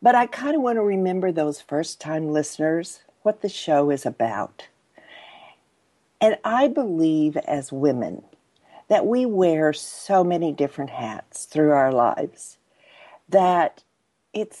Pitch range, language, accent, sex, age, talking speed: 150-205 Hz, English, American, female, 50-69, 130 wpm